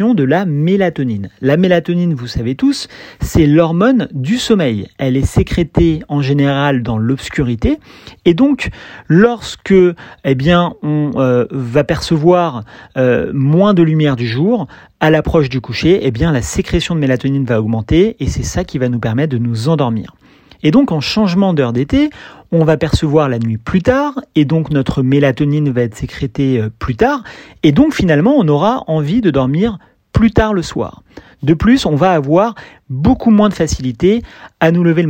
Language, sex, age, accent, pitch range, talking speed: French, male, 40-59, French, 135-195 Hz, 170 wpm